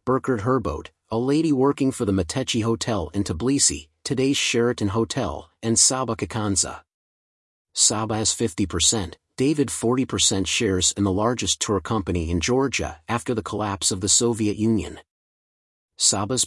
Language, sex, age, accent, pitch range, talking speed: English, male, 40-59, American, 95-120 Hz, 140 wpm